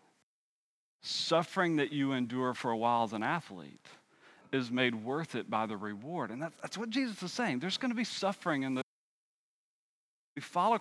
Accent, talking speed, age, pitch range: American, 190 wpm, 40-59, 125-180 Hz